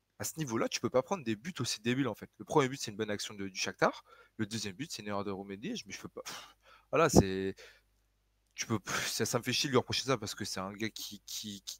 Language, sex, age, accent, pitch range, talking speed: French, male, 20-39, French, 100-125 Hz, 285 wpm